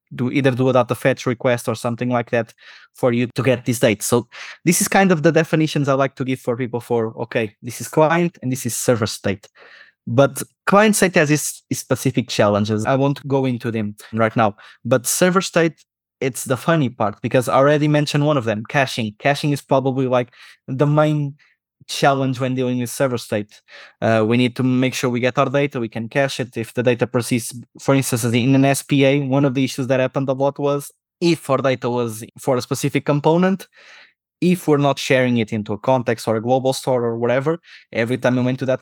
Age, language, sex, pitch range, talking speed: 20-39, English, male, 120-140 Hz, 220 wpm